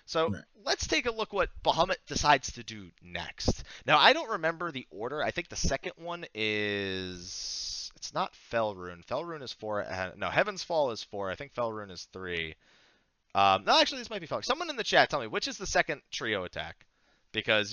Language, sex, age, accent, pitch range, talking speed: English, male, 30-49, American, 95-155 Hz, 200 wpm